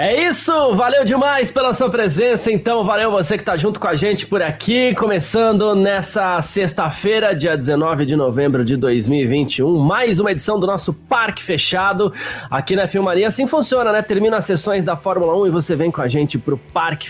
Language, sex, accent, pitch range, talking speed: Portuguese, male, Brazilian, 135-195 Hz, 195 wpm